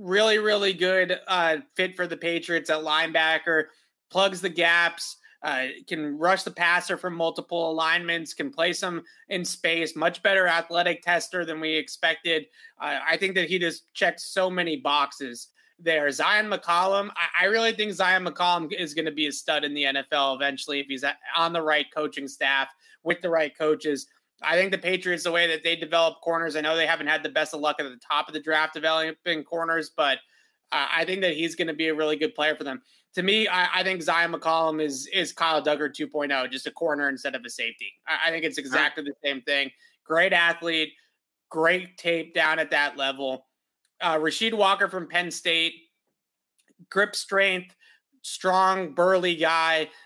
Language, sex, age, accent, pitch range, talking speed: English, male, 20-39, American, 155-180 Hz, 195 wpm